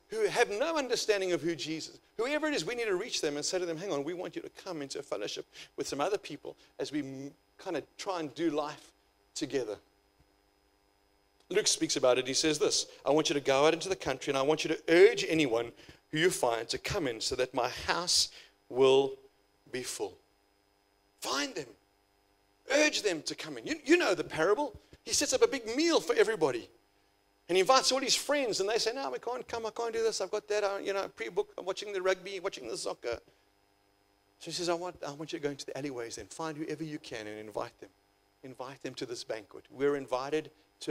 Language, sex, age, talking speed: English, male, 50-69, 230 wpm